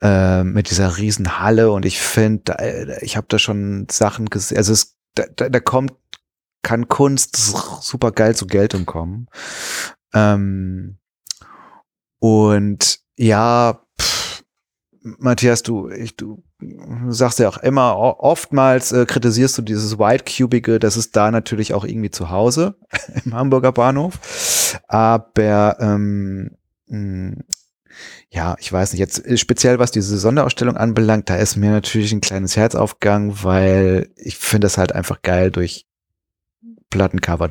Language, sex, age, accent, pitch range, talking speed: German, male, 30-49, German, 100-120 Hz, 130 wpm